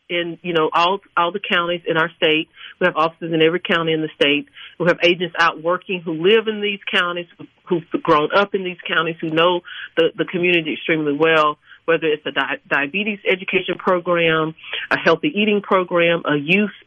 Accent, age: American, 40-59